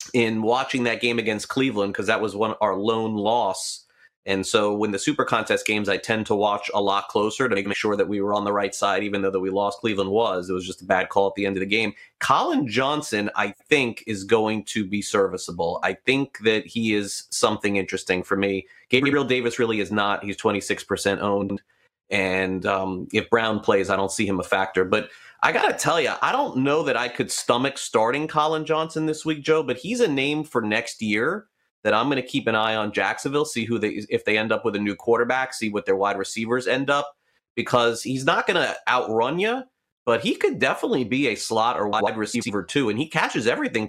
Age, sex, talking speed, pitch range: 30-49, male, 230 wpm, 100-130 Hz